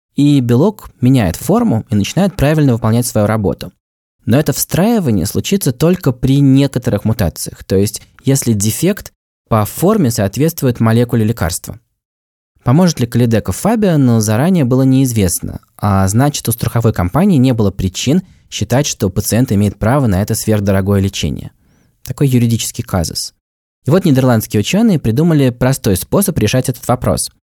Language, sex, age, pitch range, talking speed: Russian, male, 20-39, 105-140 Hz, 140 wpm